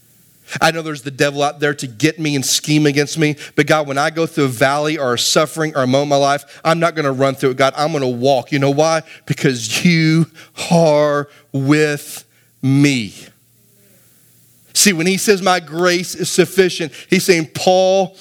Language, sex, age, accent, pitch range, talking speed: English, male, 30-49, American, 155-210 Hz, 205 wpm